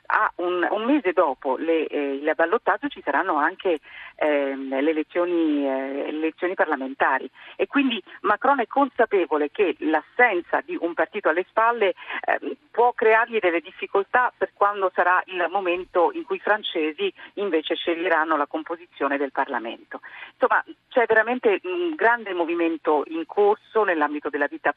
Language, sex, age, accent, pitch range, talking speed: Italian, female, 40-59, native, 150-205 Hz, 150 wpm